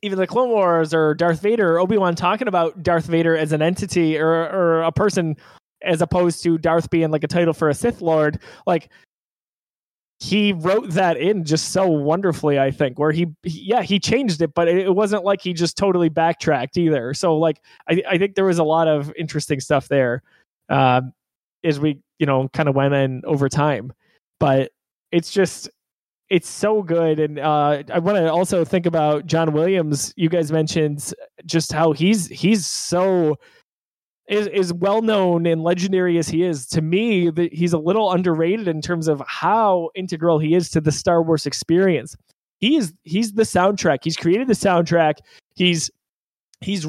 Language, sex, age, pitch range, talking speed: English, male, 20-39, 155-190 Hz, 185 wpm